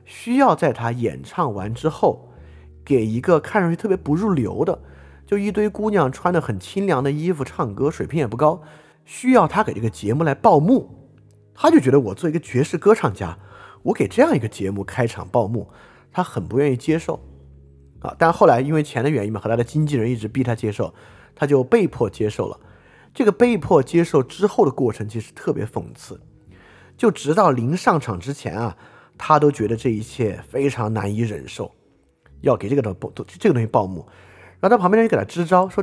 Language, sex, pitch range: Chinese, male, 110-160 Hz